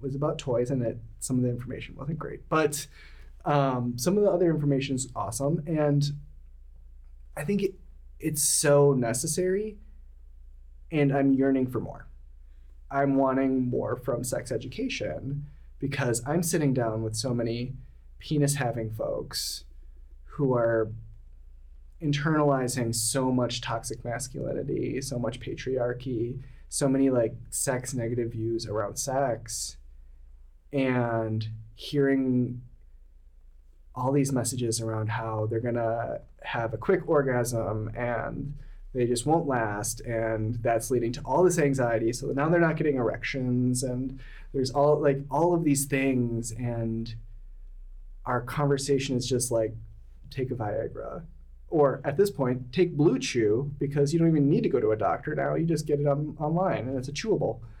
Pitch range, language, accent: 110-140 Hz, English, American